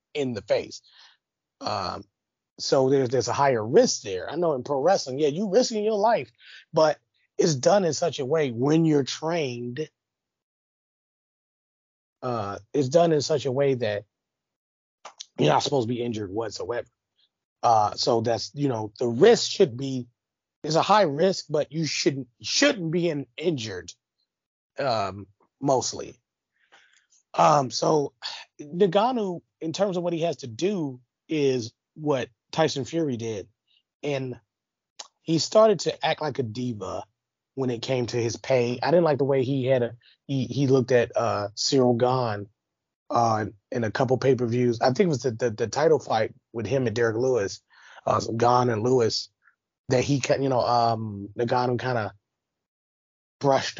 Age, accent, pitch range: 30-49, American, 115-155 Hz